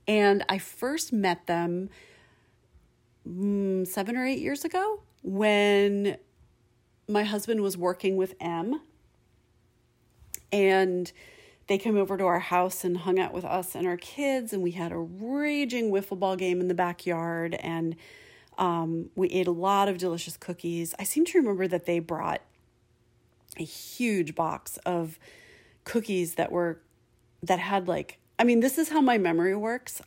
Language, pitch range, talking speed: English, 175-220 Hz, 155 wpm